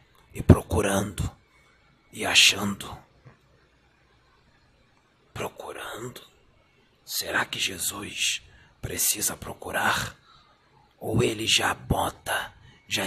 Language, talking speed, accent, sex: Portuguese, 70 wpm, Brazilian, male